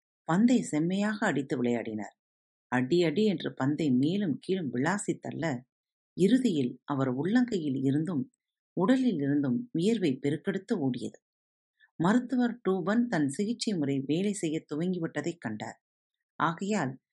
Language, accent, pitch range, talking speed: Tamil, native, 135-195 Hz, 100 wpm